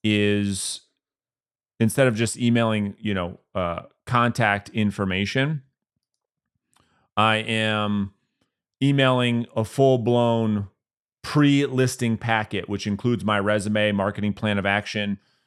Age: 30-49